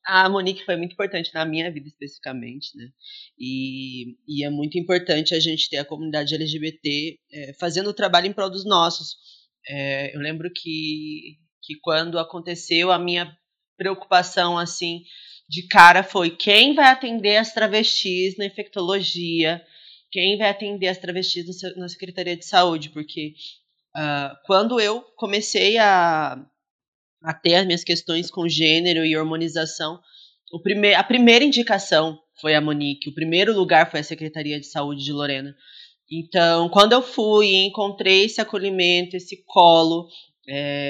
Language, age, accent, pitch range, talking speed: Portuguese, 20-39, Brazilian, 155-190 Hz, 150 wpm